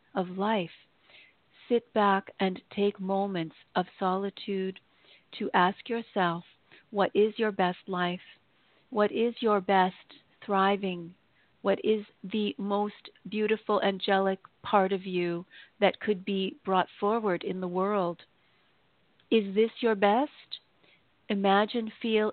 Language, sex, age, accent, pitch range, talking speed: English, female, 50-69, American, 190-215 Hz, 120 wpm